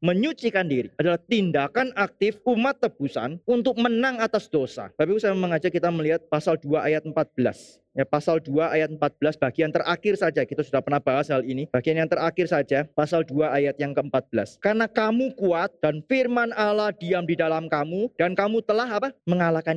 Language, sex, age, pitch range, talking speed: Indonesian, male, 30-49, 150-205 Hz, 175 wpm